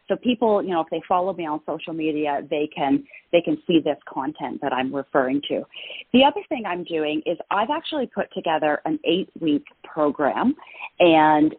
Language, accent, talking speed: English, American, 190 wpm